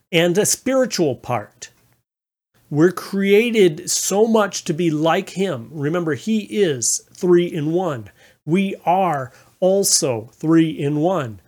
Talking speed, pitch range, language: 125 wpm, 130-180 Hz, English